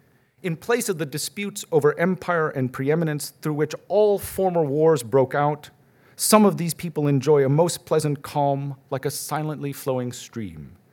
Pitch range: 125-150 Hz